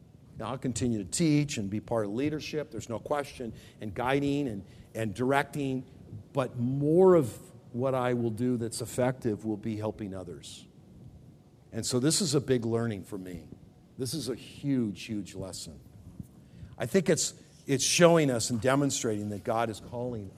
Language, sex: English, male